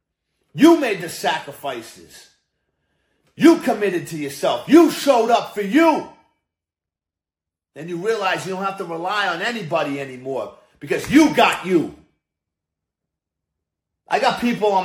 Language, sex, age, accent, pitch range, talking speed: English, male, 40-59, American, 160-235 Hz, 130 wpm